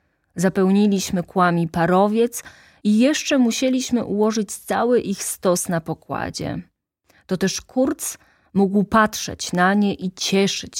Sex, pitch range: female, 170-240 Hz